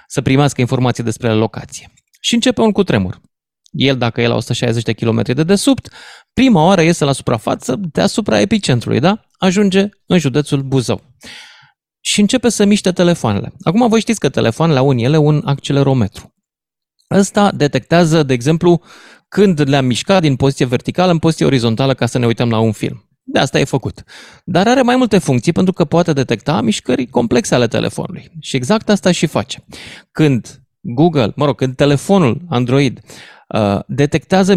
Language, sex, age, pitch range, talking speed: Romanian, male, 30-49, 125-185 Hz, 165 wpm